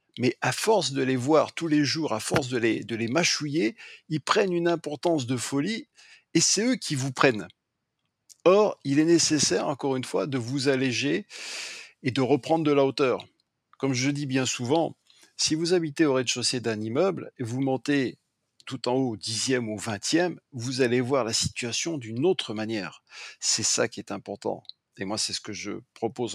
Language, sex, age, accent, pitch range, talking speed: French, male, 50-69, French, 120-150 Hz, 195 wpm